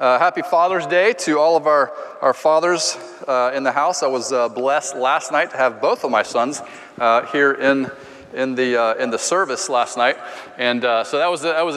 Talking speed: 225 wpm